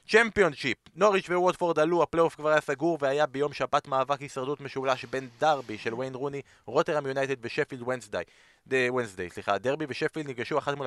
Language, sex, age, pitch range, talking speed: Hebrew, male, 30-49, 130-165 Hz, 170 wpm